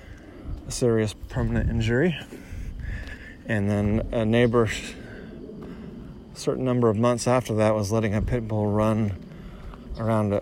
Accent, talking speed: American, 120 wpm